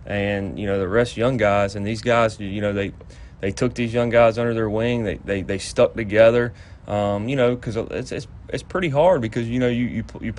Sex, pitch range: male, 100-115 Hz